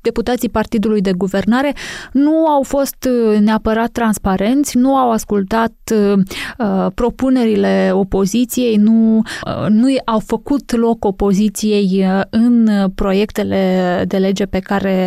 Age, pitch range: 20-39, 195-235 Hz